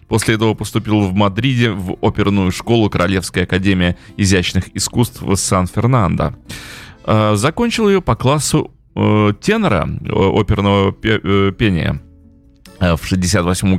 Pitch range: 95-120 Hz